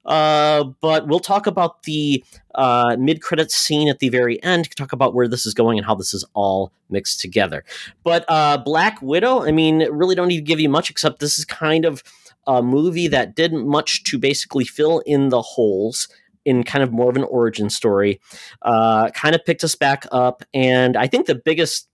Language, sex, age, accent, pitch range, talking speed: English, male, 30-49, American, 120-155 Hz, 210 wpm